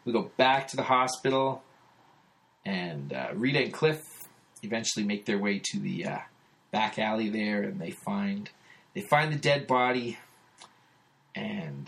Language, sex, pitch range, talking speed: English, male, 115-165 Hz, 150 wpm